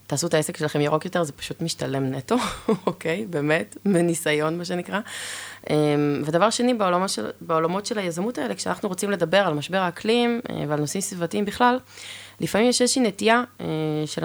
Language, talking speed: Hebrew, 175 wpm